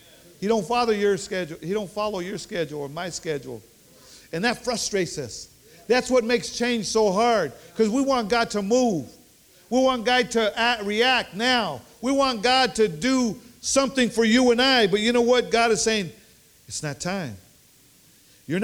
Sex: male